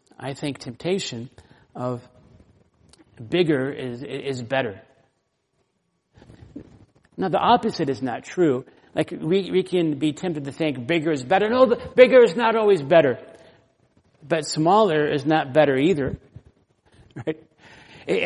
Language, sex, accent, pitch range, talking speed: English, male, American, 135-180 Hz, 130 wpm